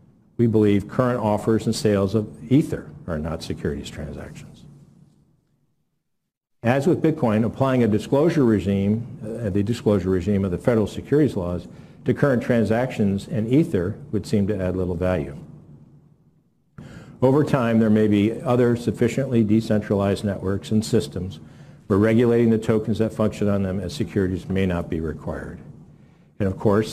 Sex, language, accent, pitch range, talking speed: male, English, American, 95-115 Hz, 145 wpm